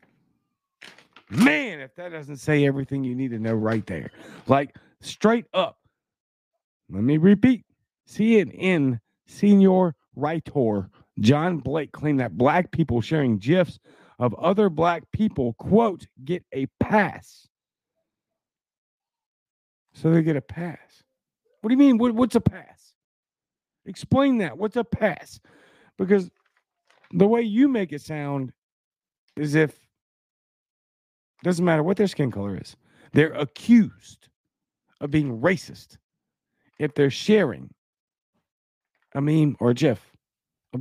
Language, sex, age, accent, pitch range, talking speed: English, male, 50-69, American, 125-190 Hz, 125 wpm